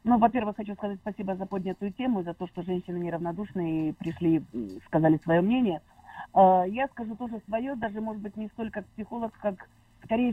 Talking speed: 175 wpm